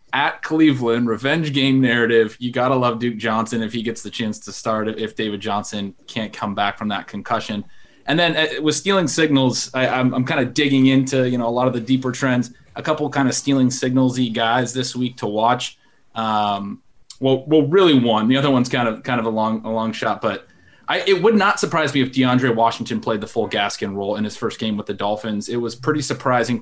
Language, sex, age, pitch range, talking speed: English, male, 20-39, 110-135 Hz, 230 wpm